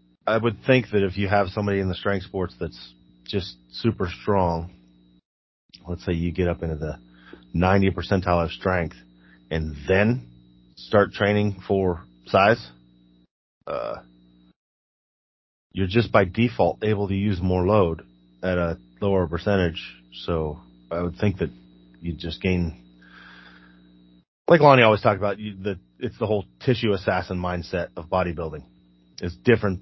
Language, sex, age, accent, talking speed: English, male, 30-49, American, 145 wpm